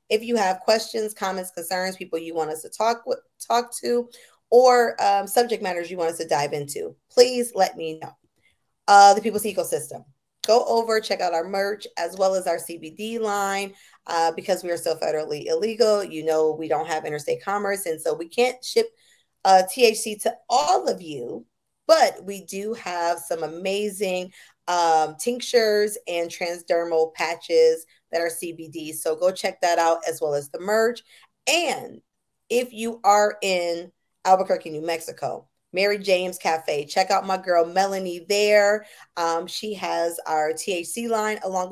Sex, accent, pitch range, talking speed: female, American, 165-220 Hz, 170 wpm